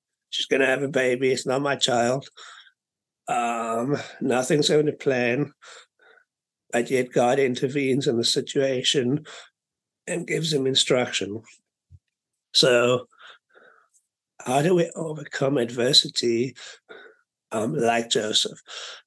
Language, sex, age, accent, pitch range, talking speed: English, male, 60-79, British, 125-145 Hz, 110 wpm